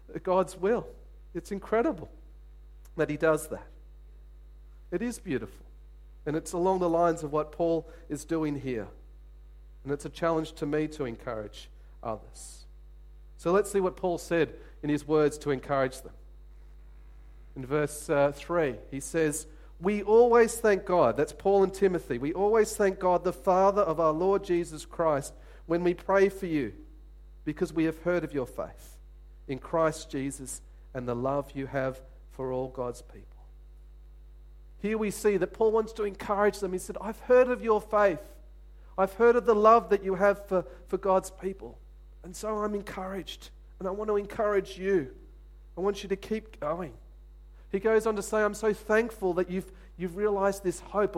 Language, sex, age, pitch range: English, male, 40-59, 130-195 Hz